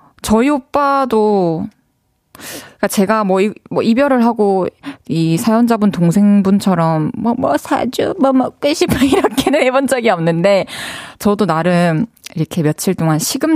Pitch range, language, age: 175-255 Hz, Korean, 20-39